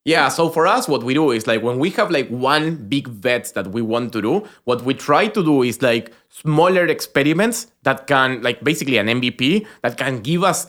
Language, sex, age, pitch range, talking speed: English, male, 20-39, 120-150 Hz, 225 wpm